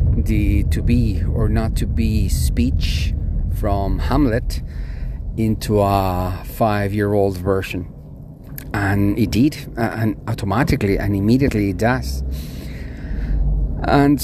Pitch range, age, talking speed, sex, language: 90-110 Hz, 40-59, 100 wpm, male, English